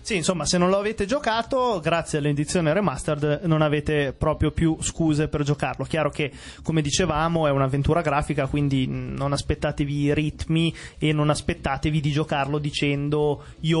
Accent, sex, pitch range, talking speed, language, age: native, male, 145-165 Hz, 155 wpm, Italian, 30-49